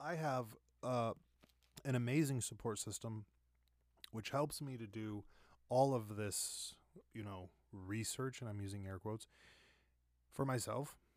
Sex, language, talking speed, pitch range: male, English, 135 wpm, 105-130 Hz